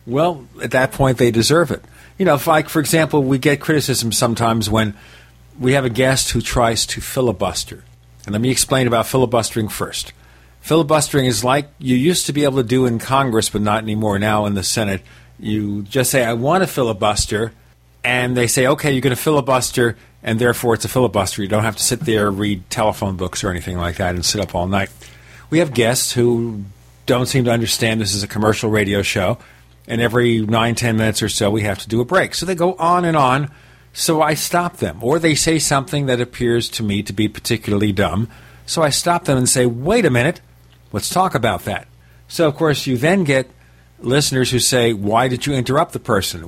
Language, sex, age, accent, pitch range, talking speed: English, male, 50-69, American, 105-130 Hz, 215 wpm